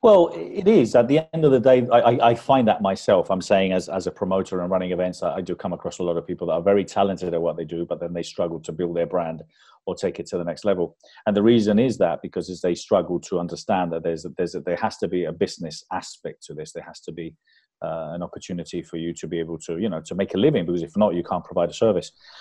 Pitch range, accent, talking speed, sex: 85-115 Hz, British, 280 wpm, male